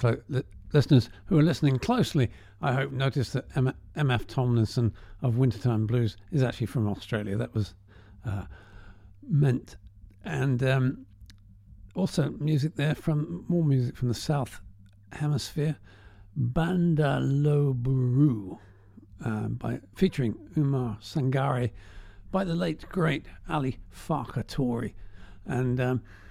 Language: English